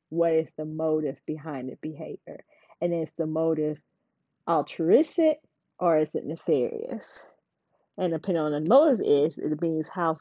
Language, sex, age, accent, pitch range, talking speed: English, female, 30-49, American, 155-180 Hz, 155 wpm